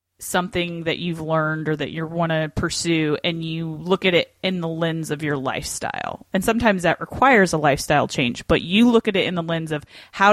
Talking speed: 220 wpm